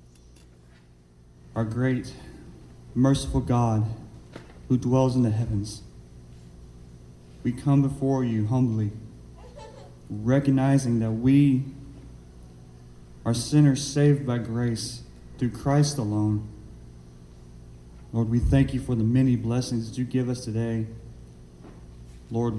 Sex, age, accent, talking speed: male, 30-49, American, 105 wpm